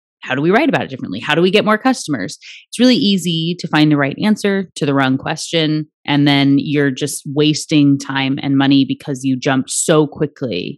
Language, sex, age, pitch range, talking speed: English, female, 30-49, 140-165 Hz, 210 wpm